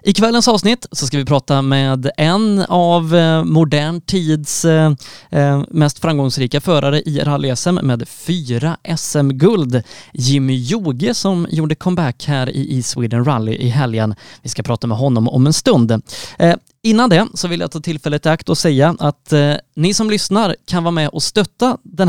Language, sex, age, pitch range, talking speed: Swedish, male, 20-39, 135-185 Hz, 165 wpm